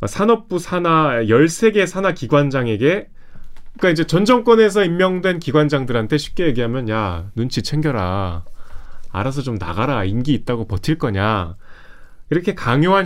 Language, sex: Korean, male